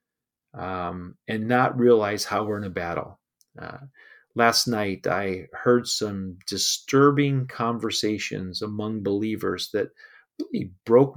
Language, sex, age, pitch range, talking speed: English, male, 40-59, 105-145 Hz, 120 wpm